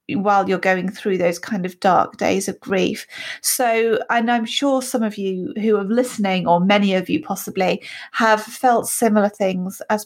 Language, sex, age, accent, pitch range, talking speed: English, female, 30-49, British, 190-230 Hz, 185 wpm